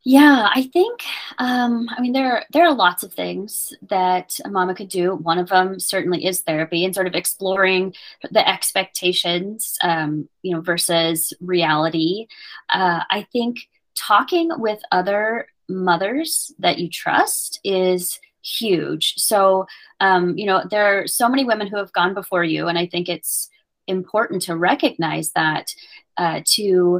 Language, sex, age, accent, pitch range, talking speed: English, female, 20-39, American, 175-210 Hz, 155 wpm